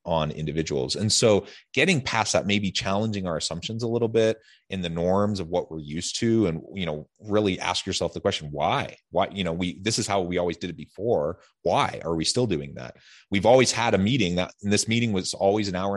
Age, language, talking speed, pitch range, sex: 30-49, English, 230 wpm, 95-120 Hz, male